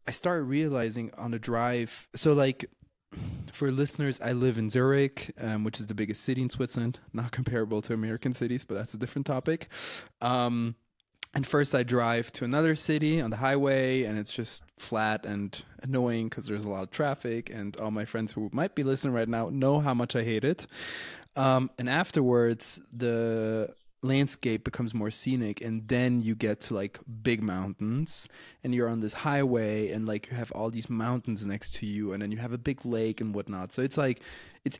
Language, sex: English, male